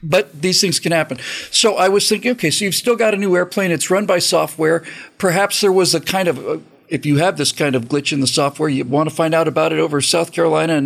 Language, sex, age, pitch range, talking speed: English, male, 50-69, 155-205 Hz, 265 wpm